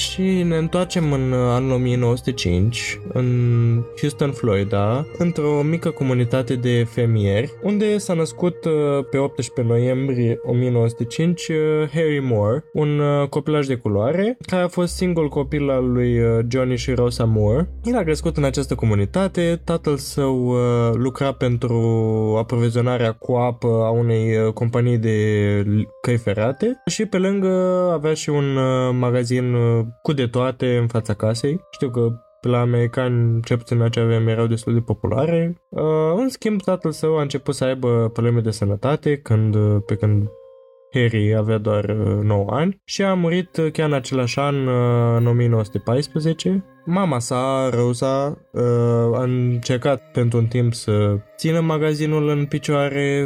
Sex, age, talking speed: male, 20-39, 140 wpm